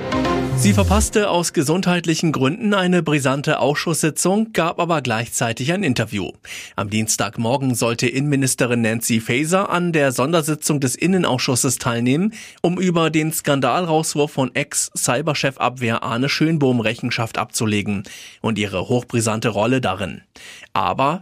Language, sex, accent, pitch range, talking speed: German, male, German, 115-155 Hz, 120 wpm